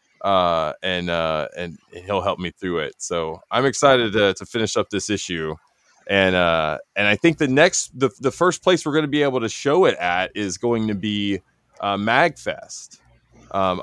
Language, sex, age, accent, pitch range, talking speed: English, male, 20-39, American, 100-130 Hz, 195 wpm